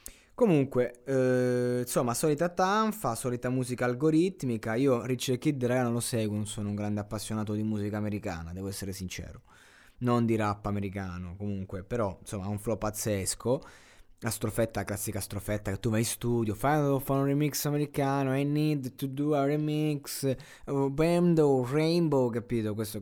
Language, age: Italian, 20-39